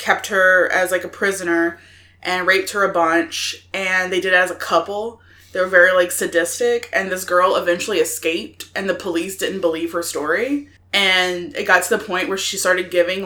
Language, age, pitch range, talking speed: English, 20-39, 165-190 Hz, 205 wpm